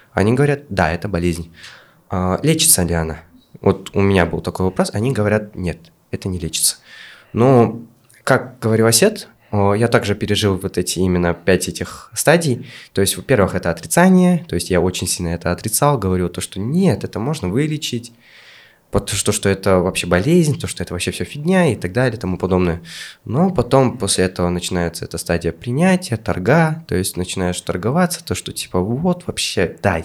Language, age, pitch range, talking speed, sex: Russian, 20-39, 90-130 Hz, 175 wpm, male